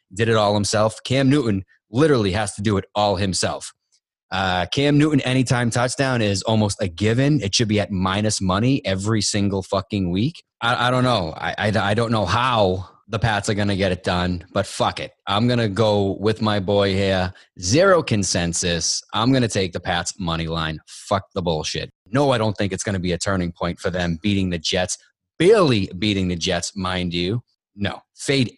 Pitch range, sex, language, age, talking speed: 90-120 Hz, male, English, 30-49, 205 wpm